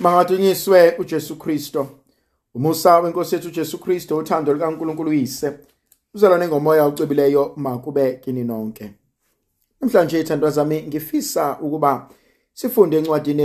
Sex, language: male, English